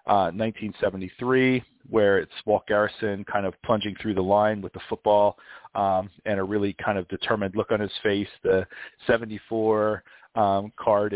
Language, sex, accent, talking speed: English, male, American, 160 wpm